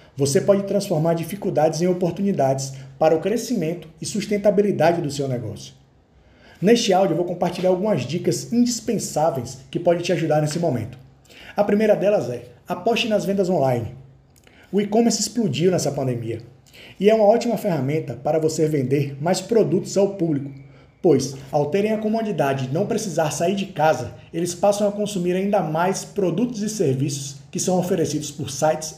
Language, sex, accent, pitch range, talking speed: Portuguese, male, Brazilian, 140-195 Hz, 160 wpm